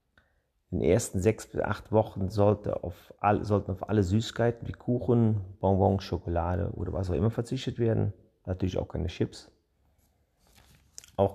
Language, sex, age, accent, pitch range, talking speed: German, male, 40-59, German, 95-115 Hz, 150 wpm